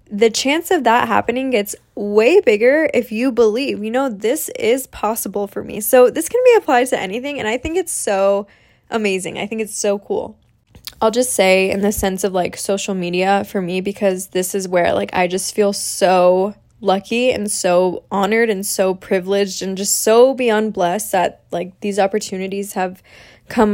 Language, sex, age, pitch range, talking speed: English, female, 10-29, 195-245 Hz, 190 wpm